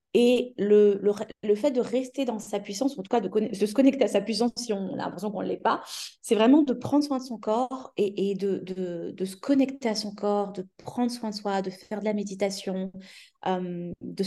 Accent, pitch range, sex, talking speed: French, 190-230 Hz, female, 250 wpm